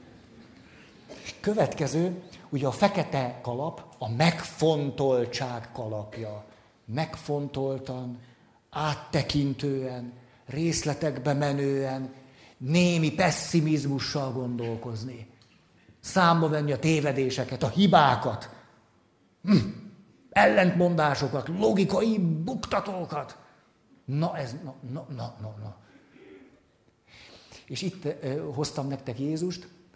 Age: 60-79